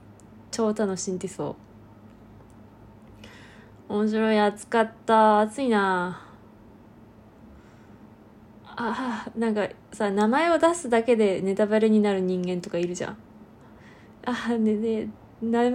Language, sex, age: Japanese, female, 20-39